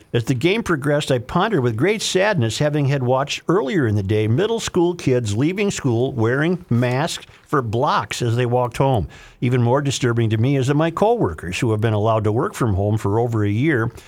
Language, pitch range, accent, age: English, 115-150 Hz, American, 50-69